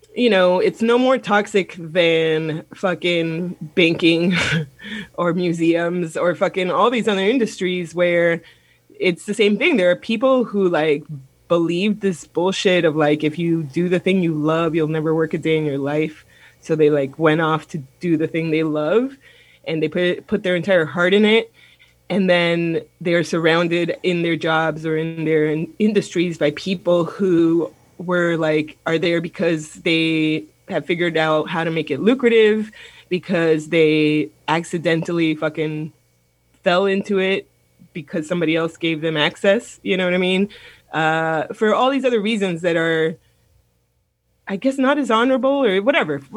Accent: American